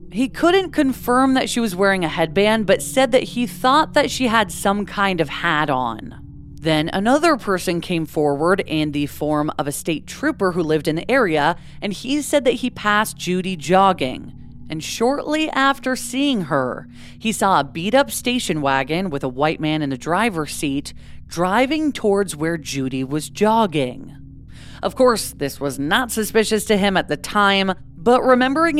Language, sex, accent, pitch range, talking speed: English, female, American, 155-235 Hz, 180 wpm